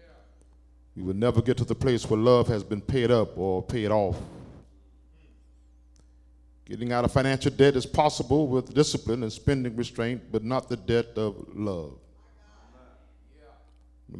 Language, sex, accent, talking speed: English, male, American, 150 wpm